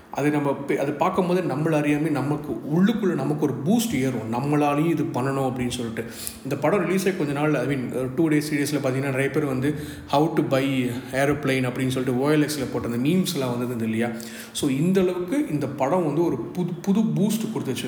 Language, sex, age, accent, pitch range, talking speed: Tamil, male, 40-59, native, 130-165 Hz, 185 wpm